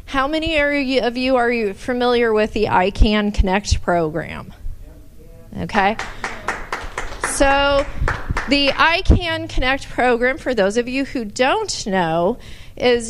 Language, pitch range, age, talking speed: English, 220-275 Hz, 40-59, 130 wpm